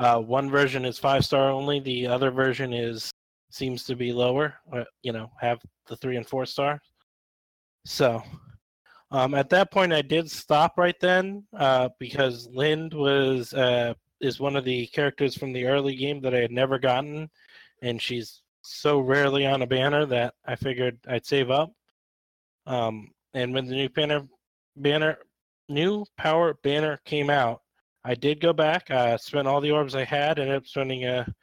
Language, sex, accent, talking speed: English, male, American, 175 wpm